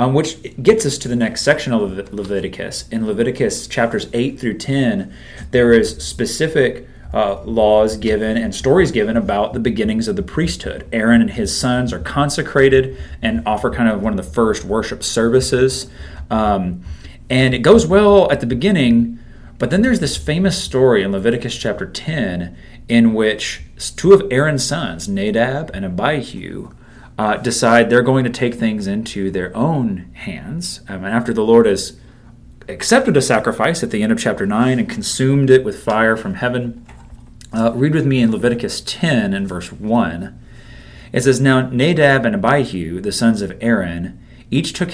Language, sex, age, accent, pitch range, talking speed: English, male, 30-49, American, 105-140 Hz, 170 wpm